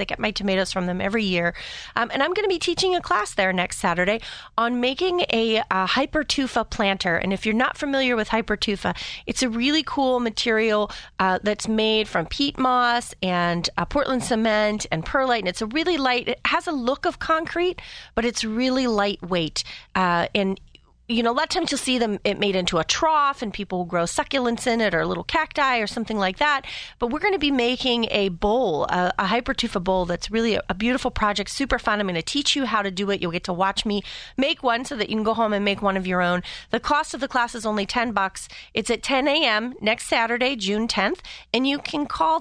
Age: 30-49